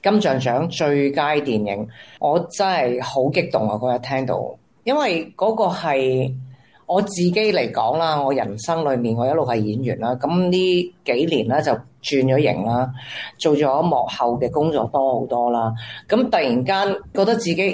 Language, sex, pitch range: Chinese, female, 130-205 Hz